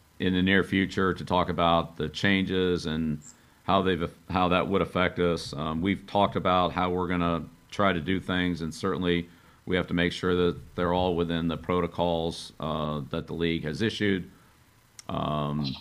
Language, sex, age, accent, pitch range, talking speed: English, male, 50-69, American, 80-90 Hz, 185 wpm